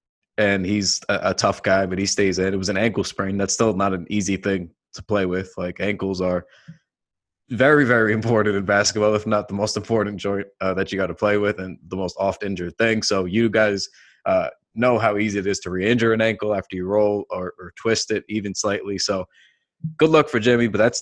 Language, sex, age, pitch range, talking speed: English, male, 20-39, 100-125 Hz, 225 wpm